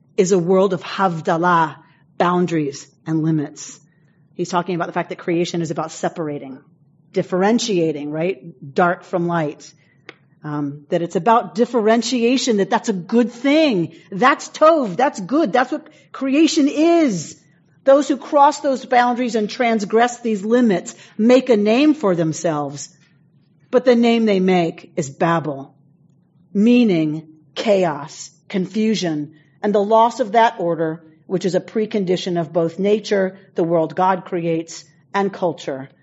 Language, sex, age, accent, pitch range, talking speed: English, female, 40-59, American, 160-210 Hz, 140 wpm